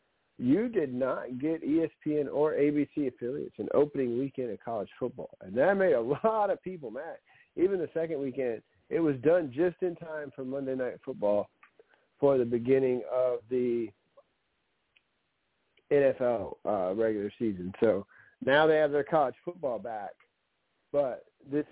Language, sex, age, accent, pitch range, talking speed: English, male, 50-69, American, 125-150 Hz, 150 wpm